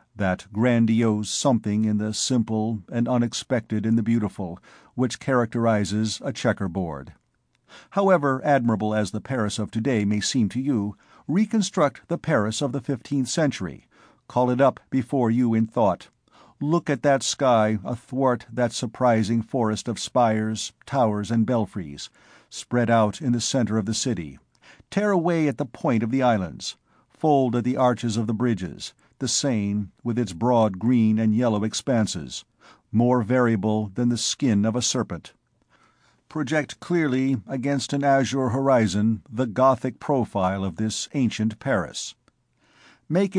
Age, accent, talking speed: 50-69, American, 150 wpm